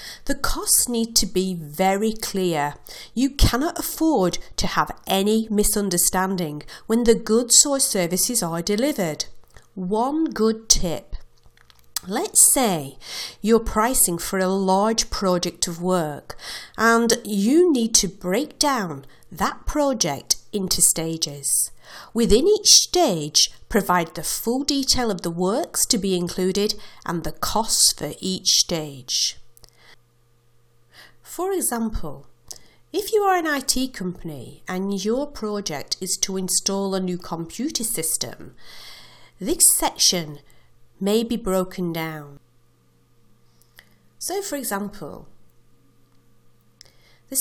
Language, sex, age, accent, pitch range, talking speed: English, female, 50-69, British, 160-235 Hz, 115 wpm